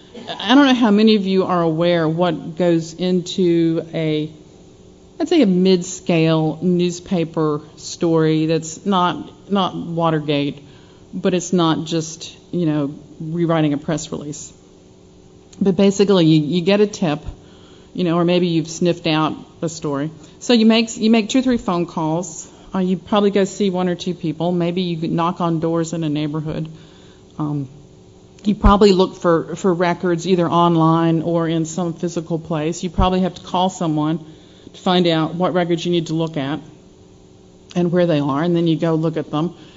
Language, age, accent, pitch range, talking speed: English, 40-59, American, 155-180 Hz, 175 wpm